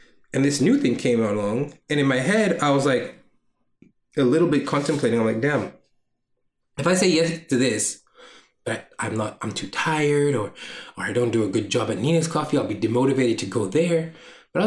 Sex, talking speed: male, 210 wpm